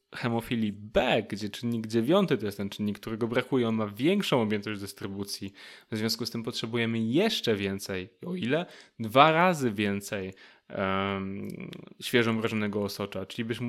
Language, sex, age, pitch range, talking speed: Polish, male, 10-29, 105-125 Hz, 145 wpm